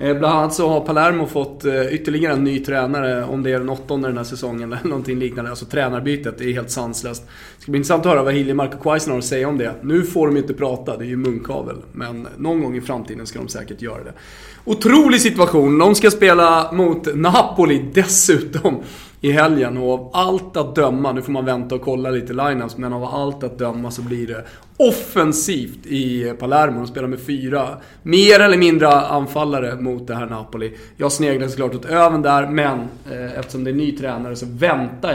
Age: 30-49